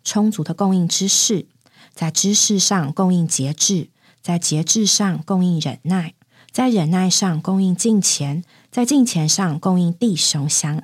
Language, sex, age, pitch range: Chinese, female, 20-39, 165-230 Hz